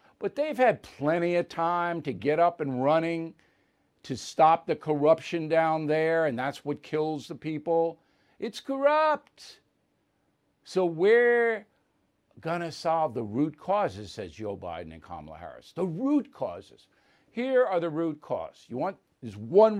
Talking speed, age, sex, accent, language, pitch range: 155 wpm, 60-79, male, American, English, 160-195 Hz